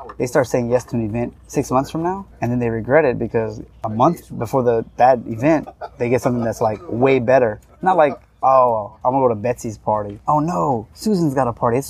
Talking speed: 230 wpm